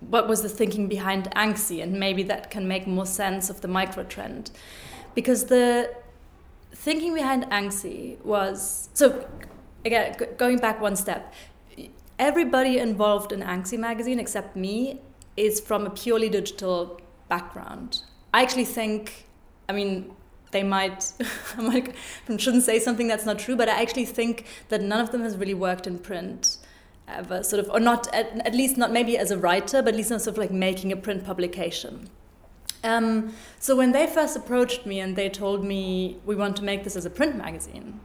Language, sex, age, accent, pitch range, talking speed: English, female, 20-39, German, 195-245 Hz, 180 wpm